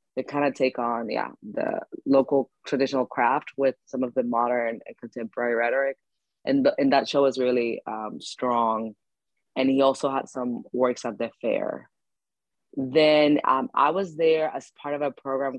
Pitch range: 125-150 Hz